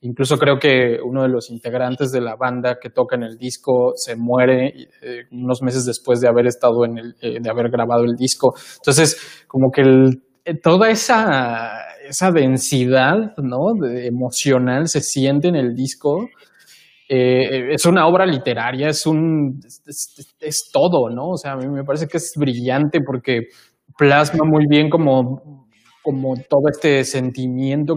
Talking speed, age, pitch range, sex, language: 170 wpm, 20-39, 125-155 Hz, male, Spanish